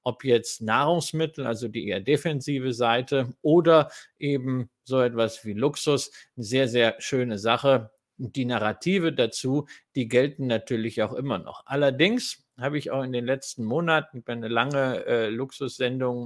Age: 50-69